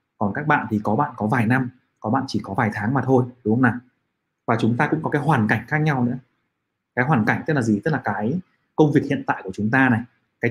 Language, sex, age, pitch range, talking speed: Vietnamese, male, 20-39, 120-155 Hz, 280 wpm